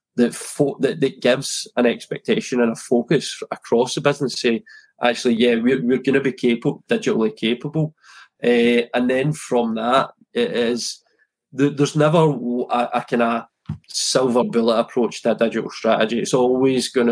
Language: English